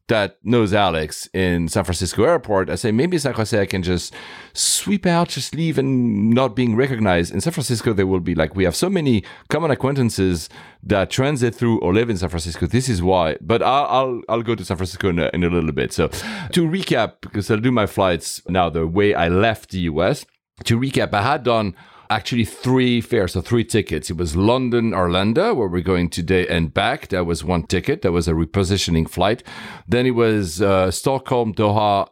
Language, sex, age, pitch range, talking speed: English, male, 40-59, 90-120 Hz, 210 wpm